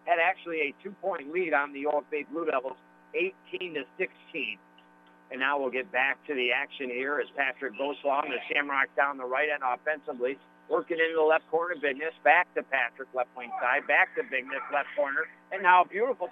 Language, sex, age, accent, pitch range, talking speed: English, male, 60-79, American, 125-165 Hz, 200 wpm